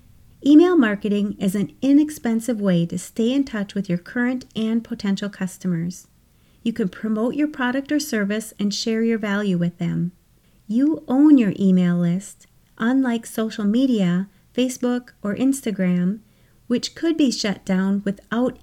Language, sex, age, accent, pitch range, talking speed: English, female, 30-49, American, 190-255 Hz, 150 wpm